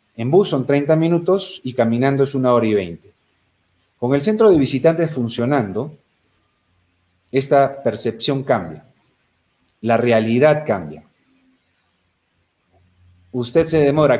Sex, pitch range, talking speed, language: male, 105-145 Hz, 115 wpm, Spanish